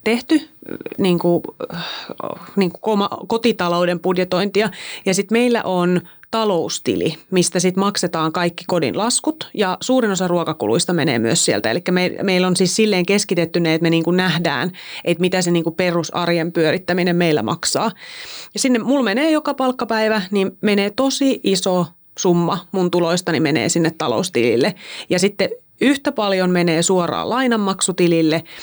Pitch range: 175-215 Hz